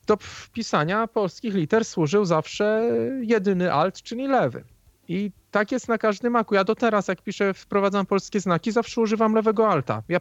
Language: Polish